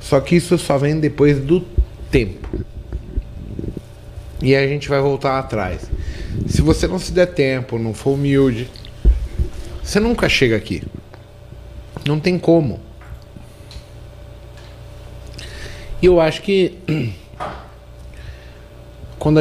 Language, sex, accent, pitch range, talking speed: Portuguese, male, Brazilian, 110-140 Hz, 110 wpm